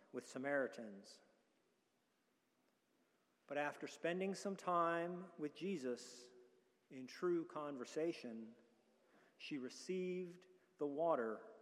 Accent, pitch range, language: American, 130-180 Hz, English